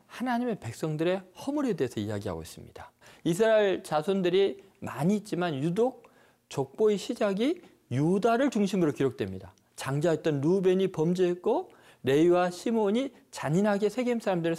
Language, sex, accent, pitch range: Korean, male, native, 145-220 Hz